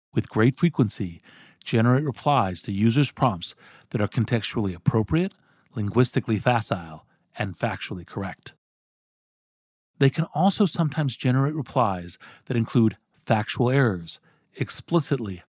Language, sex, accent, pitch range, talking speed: English, male, American, 110-145 Hz, 110 wpm